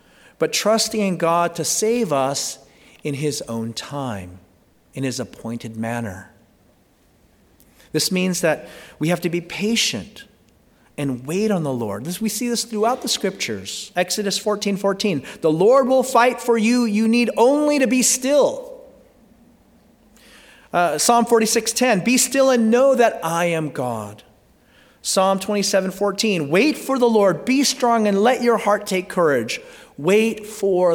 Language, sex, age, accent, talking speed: English, male, 40-59, American, 150 wpm